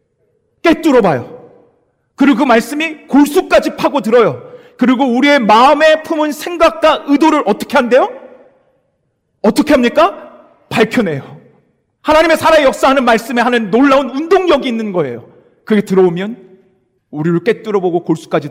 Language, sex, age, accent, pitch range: Korean, male, 40-59, native, 185-310 Hz